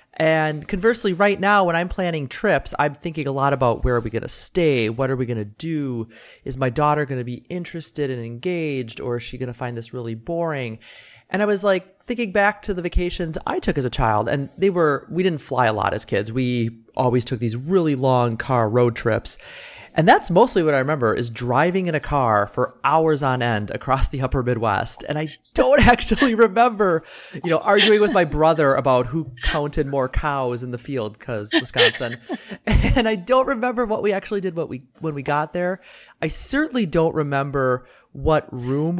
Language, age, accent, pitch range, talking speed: English, 30-49, American, 130-205 Hz, 200 wpm